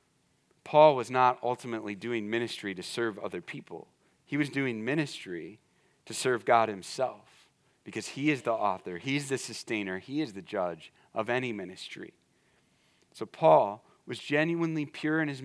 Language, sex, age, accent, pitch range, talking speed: English, male, 40-59, American, 115-155 Hz, 155 wpm